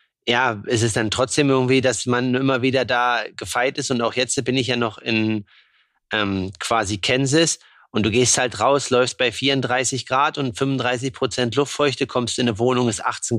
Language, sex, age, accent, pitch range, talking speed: German, male, 30-49, German, 115-135 Hz, 195 wpm